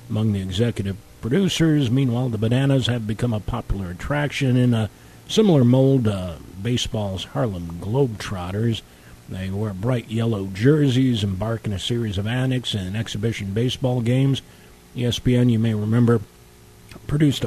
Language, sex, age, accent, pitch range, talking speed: English, male, 50-69, American, 100-125 Hz, 145 wpm